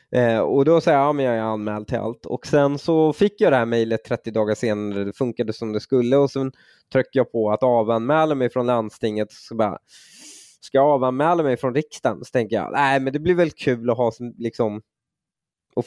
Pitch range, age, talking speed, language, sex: 110-140 Hz, 20-39, 220 wpm, Swedish, male